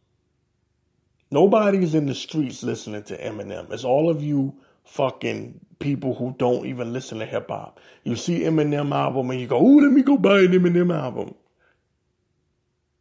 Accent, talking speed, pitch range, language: American, 160 wpm, 125-180 Hz, English